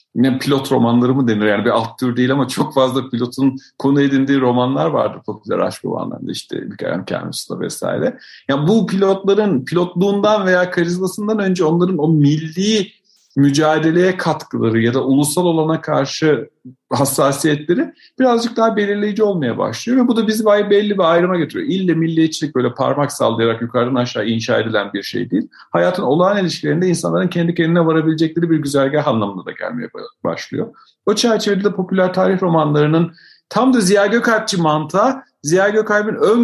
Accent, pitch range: native, 130-190 Hz